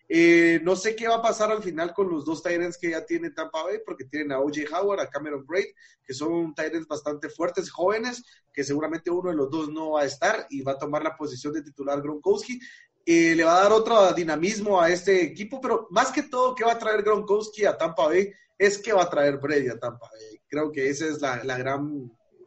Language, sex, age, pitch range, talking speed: Spanish, male, 30-49, 145-200 Hz, 240 wpm